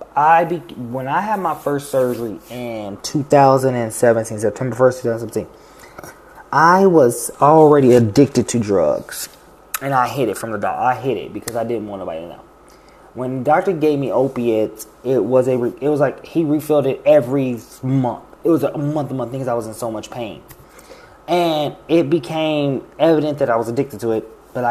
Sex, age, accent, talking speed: male, 20-39, American, 190 wpm